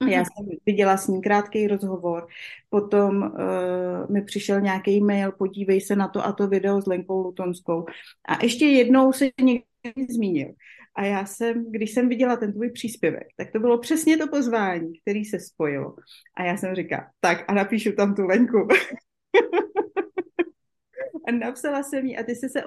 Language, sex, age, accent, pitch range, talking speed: Czech, female, 30-49, native, 190-235 Hz, 170 wpm